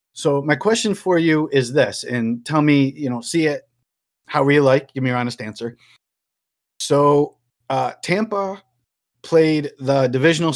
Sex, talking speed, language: male, 165 wpm, English